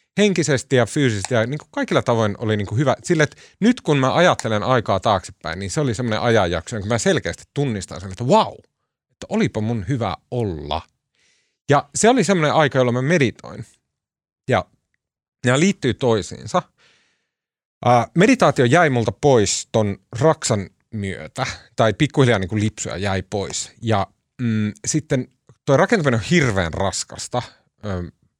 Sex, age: male, 30-49